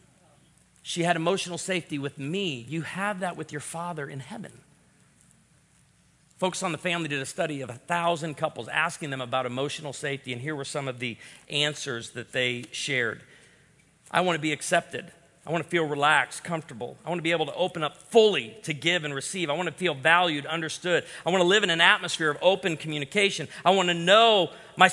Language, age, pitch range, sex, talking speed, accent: English, 40-59, 155-195 Hz, male, 205 wpm, American